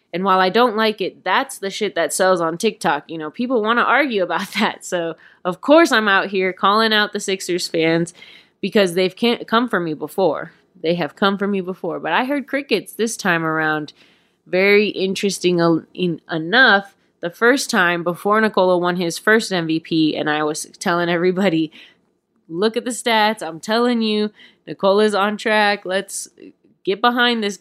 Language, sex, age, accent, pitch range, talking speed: English, female, 20-39, American, 165-215 Hz, 180 wpm